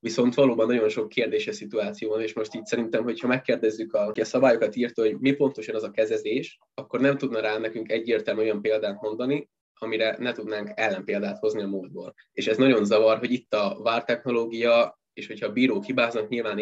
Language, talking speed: Hungarian, 190 wpm